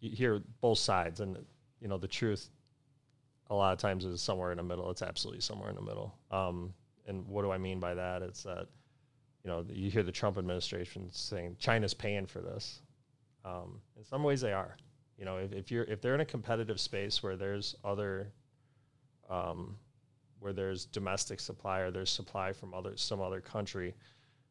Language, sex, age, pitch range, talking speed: English, male, 30-49, 95-125 Hz, 195 wpm